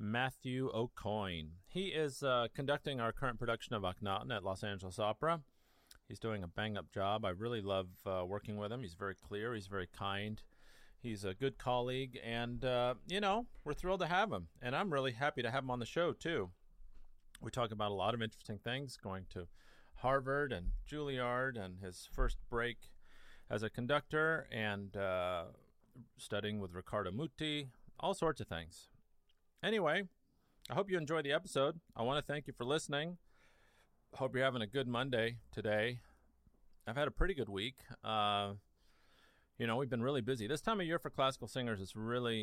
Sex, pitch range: male, 100-135 Hz